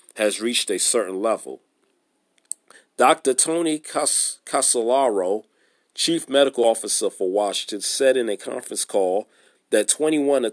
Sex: male